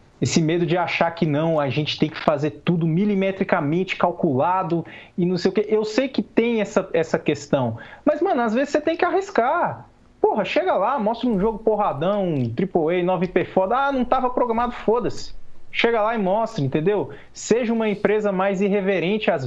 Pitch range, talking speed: 160-215 Hz, 190 wpm